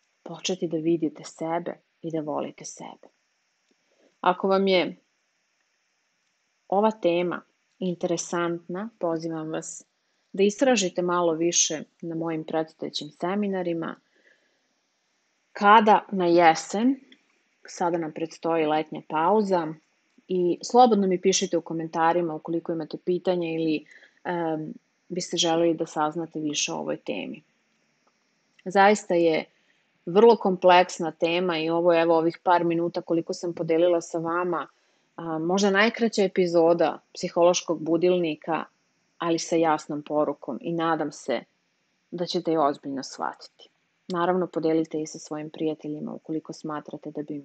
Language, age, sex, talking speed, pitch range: English, 30-49, female, 120 wpm, 160-180 Hz